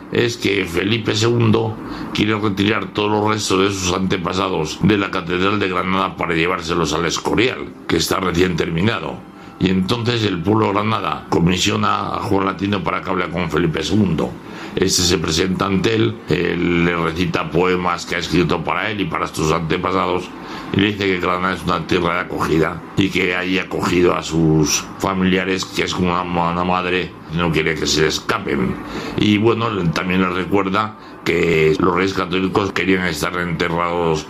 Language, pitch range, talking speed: Spanish, 90-100 Hz, 170 wpm